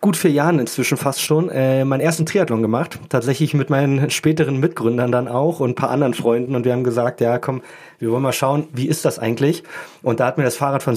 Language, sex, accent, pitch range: German, male, German, 120-155 Hz